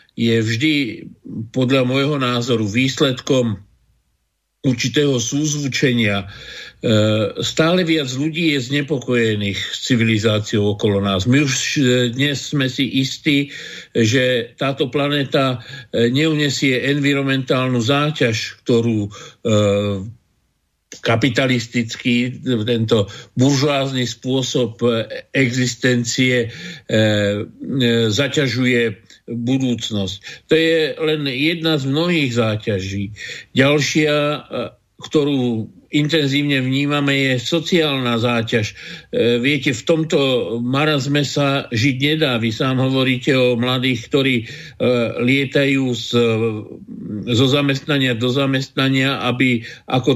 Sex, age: male, 50-69